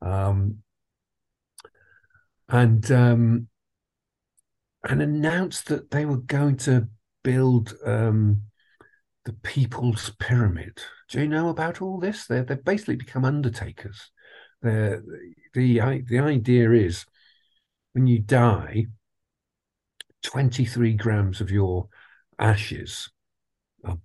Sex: male